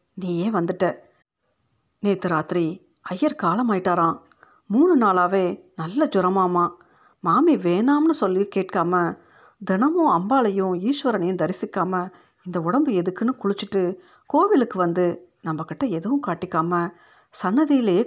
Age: 50-69